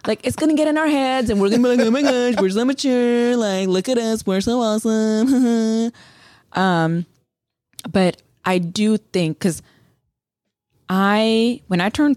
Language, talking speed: English, 180 wpm